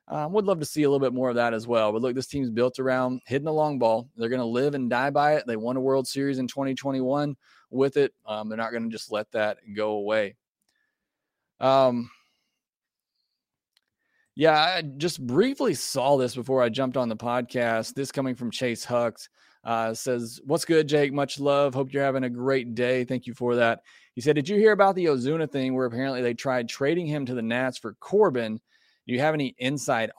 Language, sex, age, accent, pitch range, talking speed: English, male, 20-39, American, 120-145 Hz, 220 wpm